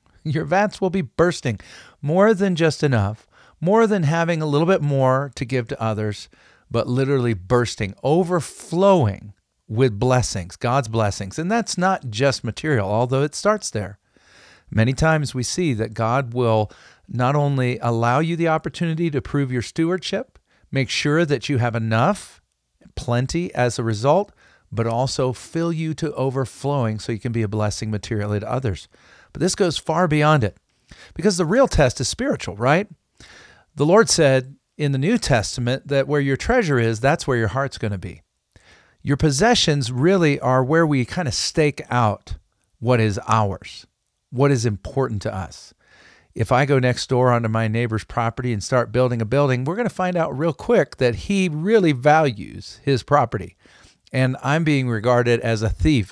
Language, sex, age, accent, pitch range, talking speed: English, male, 40-59, American, 115-155 Hz, 175 wpm